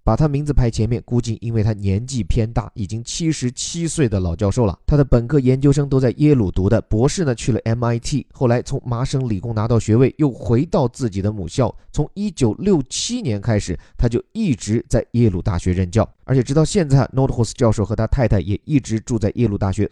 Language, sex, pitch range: Chinese, male, 105-145 Hz